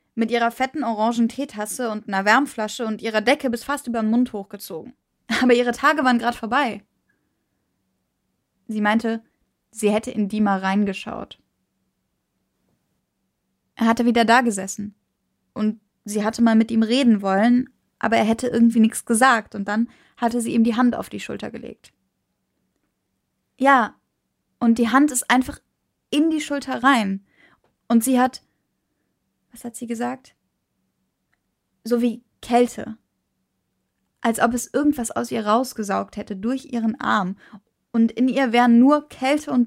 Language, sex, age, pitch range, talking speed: German, female, 20-39, 210-255 Hz, 150 wpm